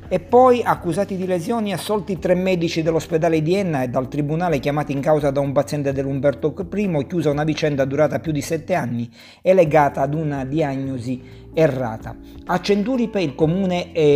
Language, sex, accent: Italian, male, native